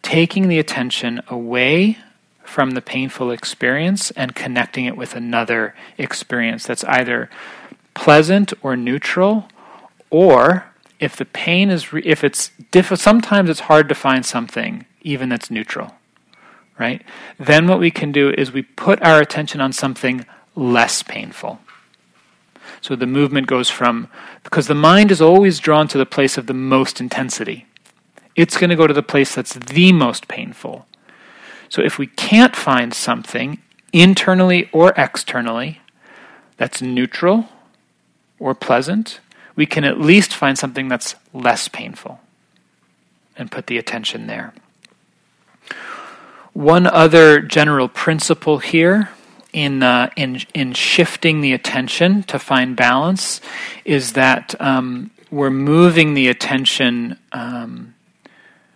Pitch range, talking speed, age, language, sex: 130-175 Hz, 135 wpm, 40-59, English, male